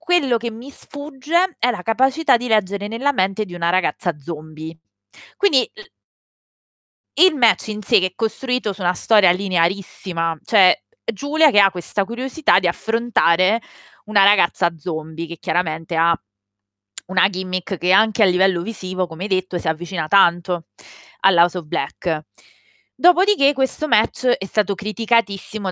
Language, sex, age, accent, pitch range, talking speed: Italian, female, 20-39, native, 170-230 Hz, 145 wpm